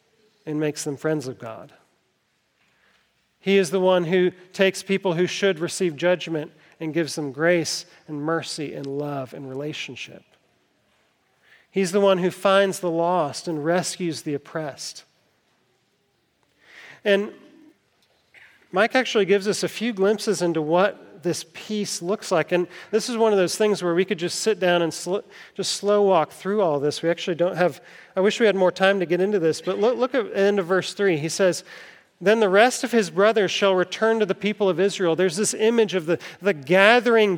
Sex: male